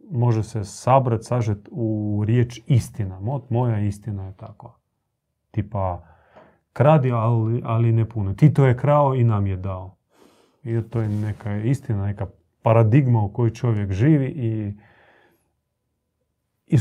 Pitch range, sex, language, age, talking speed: 110-125 Hz, male, Croatian, 30-49, 135 wpm